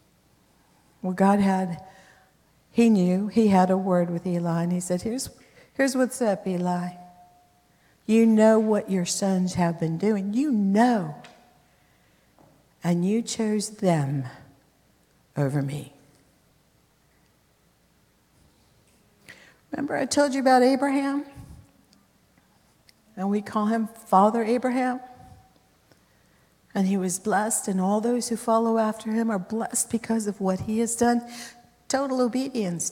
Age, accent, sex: 60-79, American, female